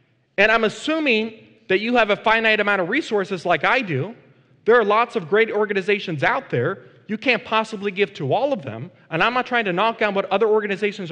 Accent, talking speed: American, 215 wpm